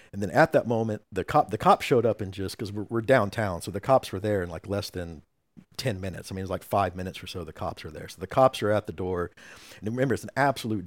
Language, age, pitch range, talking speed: English, 50-69, 95-115 Hz, 295 wpm